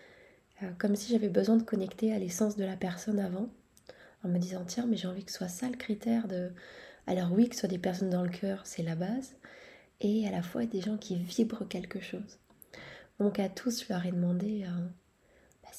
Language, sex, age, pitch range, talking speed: French, female, 20-39, 180-215 Hz, 220 wpm